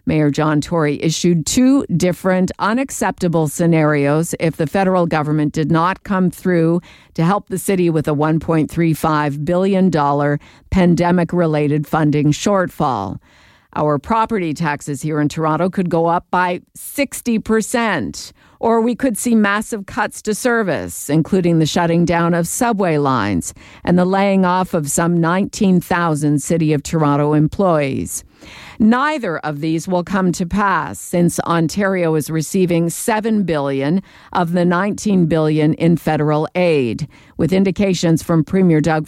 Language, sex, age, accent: English, female, 50-69, American